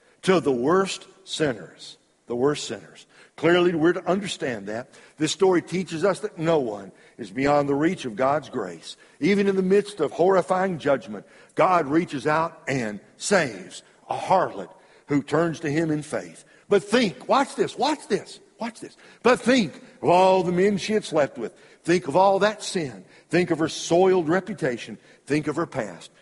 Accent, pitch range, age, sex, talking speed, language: American, 125-180 Hz, 60-79, male, 180 wpm, English